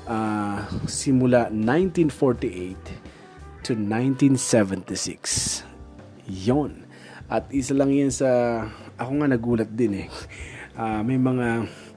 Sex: male